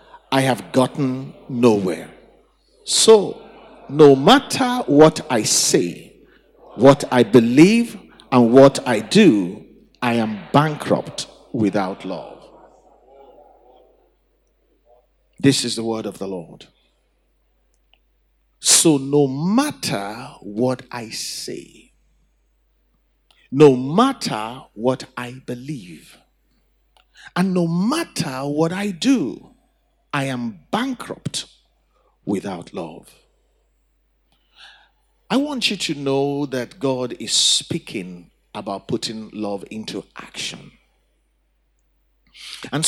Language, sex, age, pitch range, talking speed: English, male, 50-69, 120-200 Hz, 90 wpm